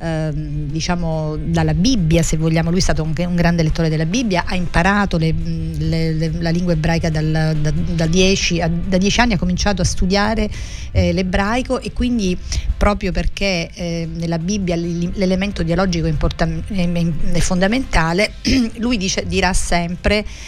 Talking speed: 150 wpm